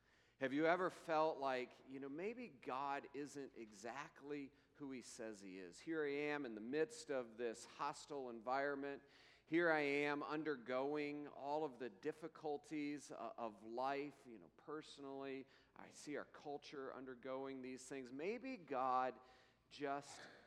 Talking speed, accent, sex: 145 wpm, American, male